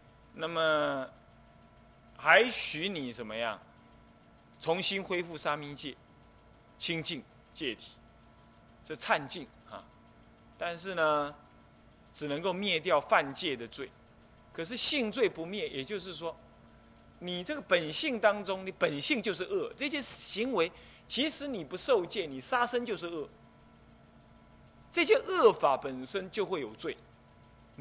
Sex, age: male, 20-39